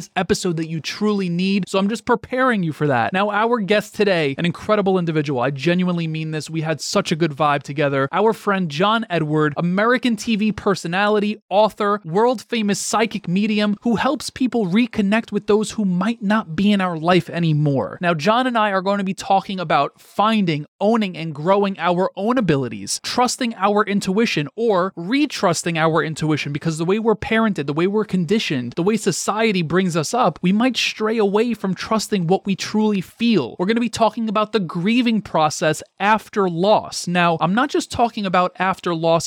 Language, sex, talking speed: English, male, 190 wpm